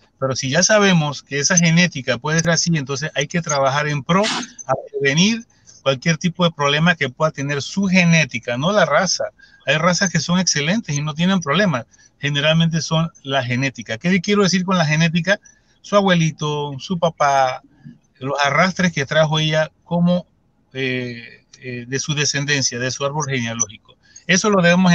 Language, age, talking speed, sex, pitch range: Spanish, 40-59, 170 wpm, male, 135-175 Hz